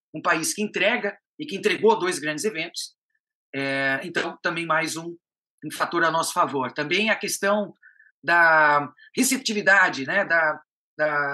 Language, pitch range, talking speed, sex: Portuguese, 165-225 Hz, 150 wpm, male